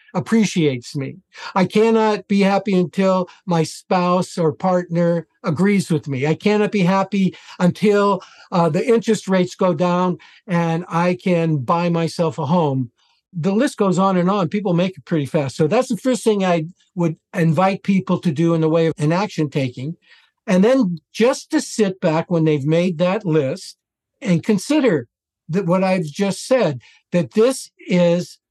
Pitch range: 165-210 Hz